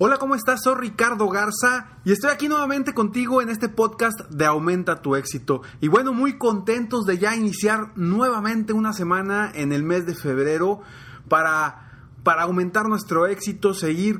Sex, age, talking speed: male, 30-49, 165 wpm